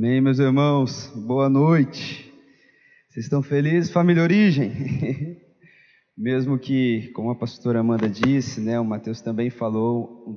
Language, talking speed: Portuguese, 135 wpm